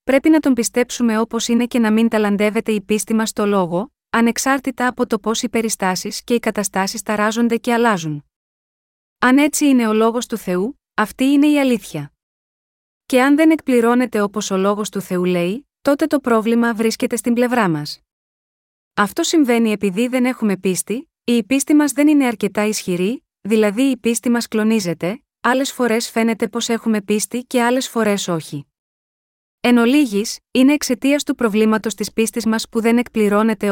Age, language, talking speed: 20-39, Greek, 170 wpm